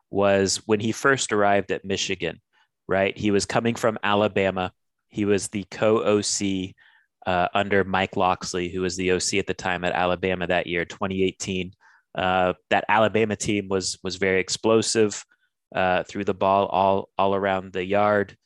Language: English